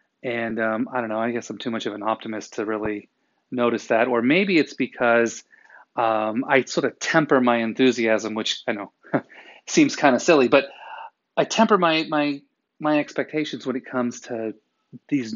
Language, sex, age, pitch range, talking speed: English, male, 30-49, 115-155 Hz, 185 wpm